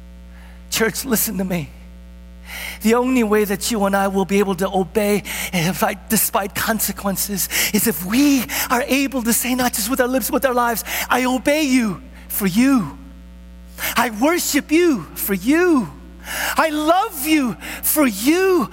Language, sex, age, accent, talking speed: English, male, 50-69, American, 160 wpm